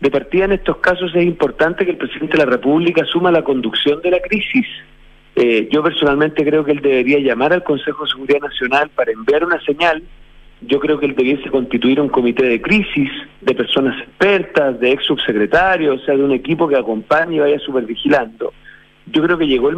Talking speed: 205 wpm